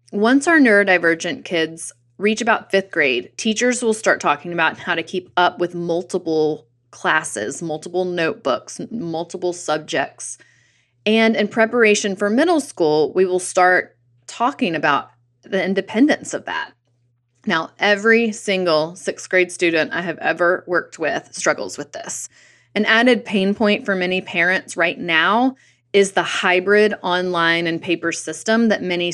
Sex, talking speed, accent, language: female, 145 wpm, American, English